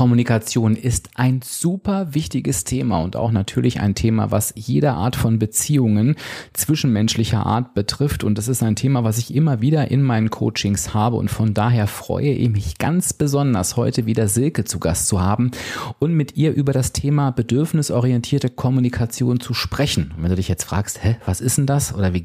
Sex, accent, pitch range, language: male, German, 95-130 Hz, German